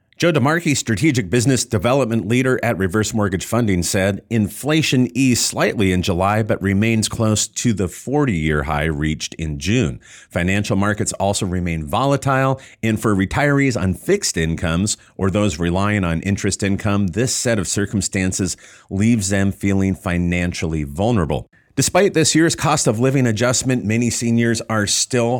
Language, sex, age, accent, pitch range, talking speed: English, male, 40-59, American, 95-120 Hz, 150 wpm